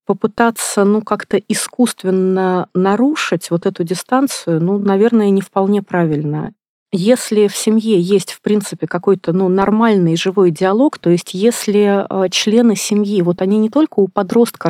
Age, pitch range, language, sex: 30-49, 175-210 Hz, Russian, female